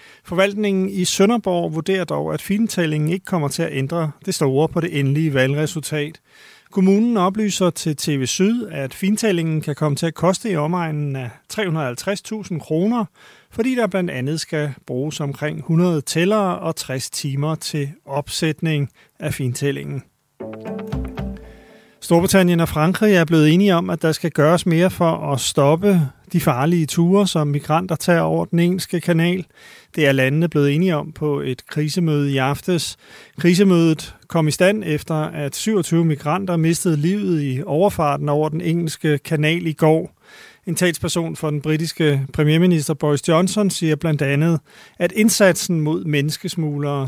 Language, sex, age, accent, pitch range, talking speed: Danish, male, 30-49, native, 145-180 Hz, 150 wpm